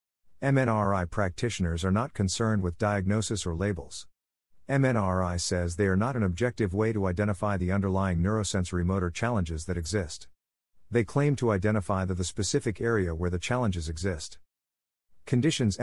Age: 50-69